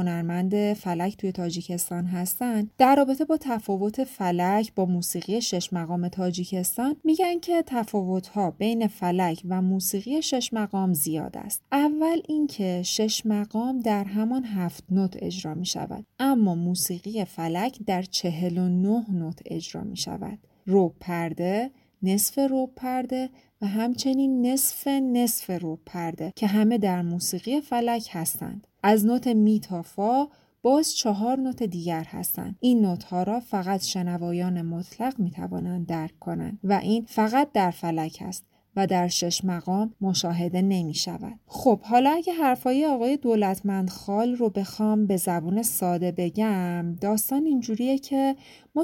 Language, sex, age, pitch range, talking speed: Persian, female, 30-49, 180-240 Hz, 135 wpm